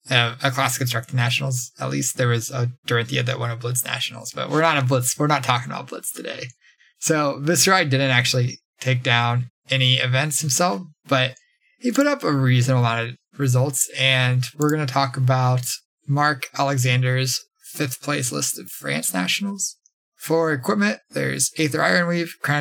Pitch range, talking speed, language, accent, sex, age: 130-160 Hz, 175 wpm, English, American, male, 20-39